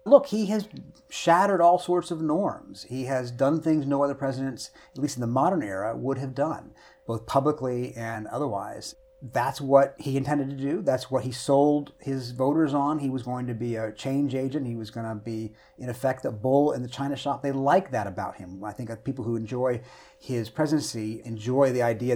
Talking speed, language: 210 wpm, English